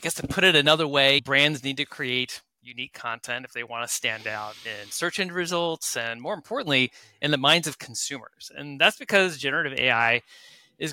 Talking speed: 205 wpm